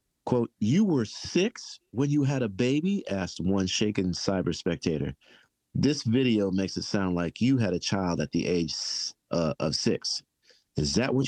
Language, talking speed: English, 175 wpm